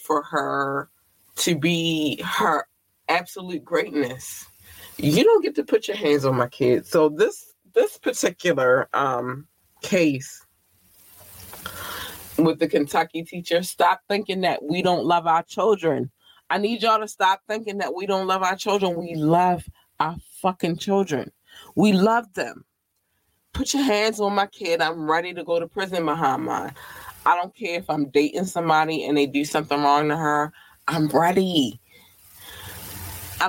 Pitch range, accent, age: 145-190 Hz, American, 20-39